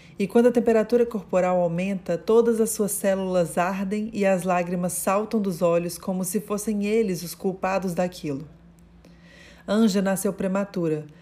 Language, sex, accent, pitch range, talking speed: Portuguese, female, Brazilian, 180-225 Hz, 145 wpm